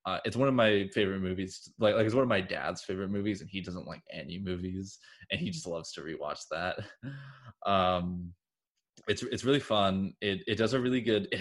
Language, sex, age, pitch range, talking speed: English, male, 20-39, 95-120 Hz, 215 wpm